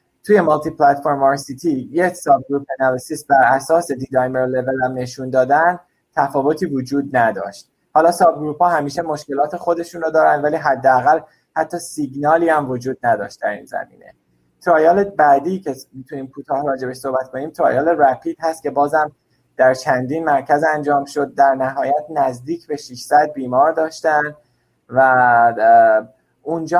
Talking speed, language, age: 140 wpm, Persian, 20-39